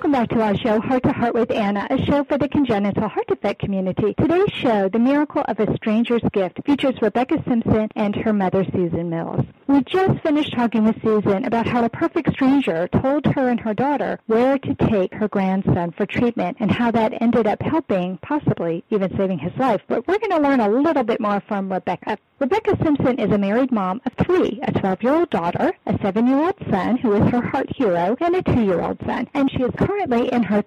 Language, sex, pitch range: English, female, 200-270 Hz